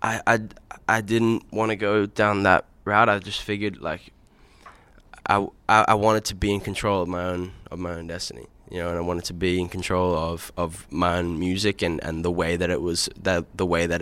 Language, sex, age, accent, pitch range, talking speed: English, male, 10-29, Australian, 90-100 Hz, 225 wpm